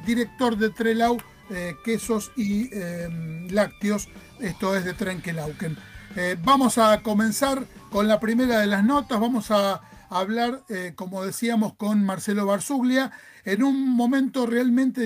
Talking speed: 140 wpm